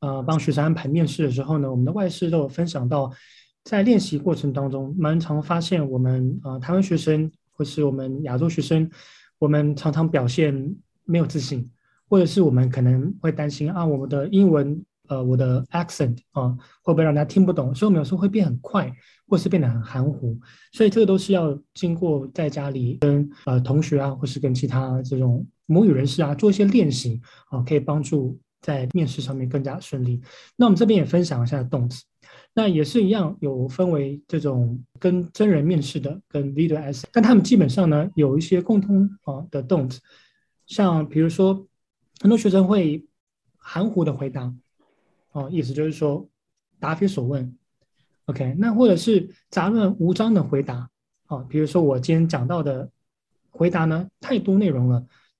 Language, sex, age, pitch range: Chinese, male, 20-39, 135-180 Hz